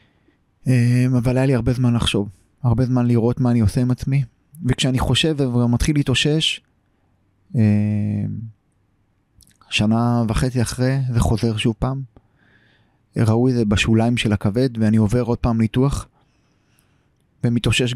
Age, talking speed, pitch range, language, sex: 20-39, 125 wpm, 110-130 Hz, Hebrew, male